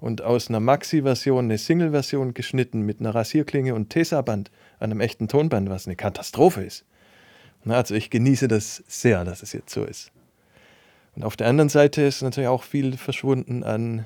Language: German